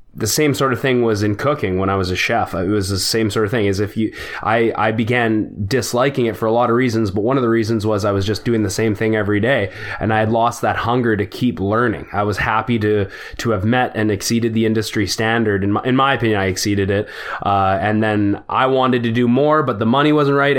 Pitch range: 105-125 Hz